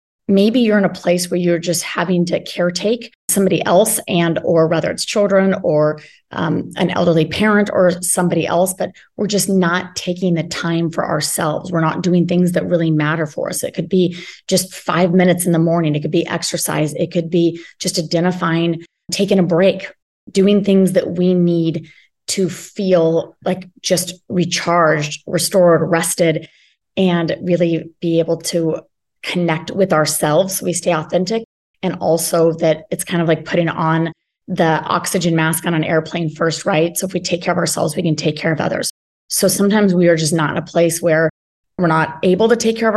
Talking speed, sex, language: 190 wpm, female, English